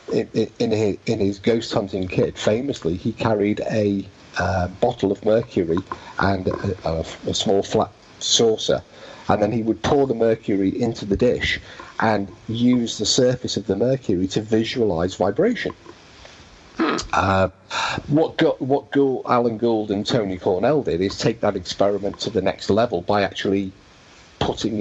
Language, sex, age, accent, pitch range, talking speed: English, male, 50-69, British, 95-110 Hz, 145 wpm